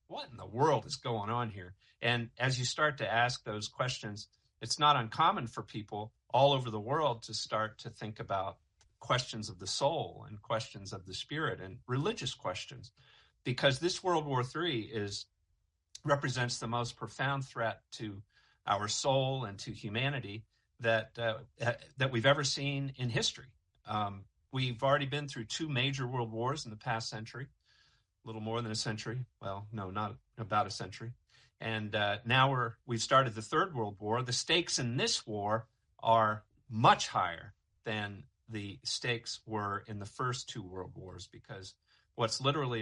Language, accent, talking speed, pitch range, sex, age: English, American, 170 wpm, 105-130 Hz, male, 50-69